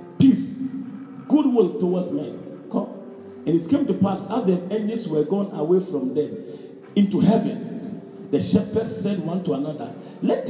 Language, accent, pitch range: English, Nigerian, 190-250 Hz